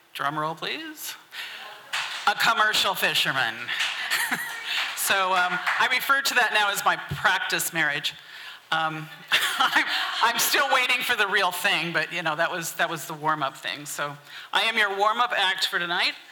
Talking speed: 160 wpm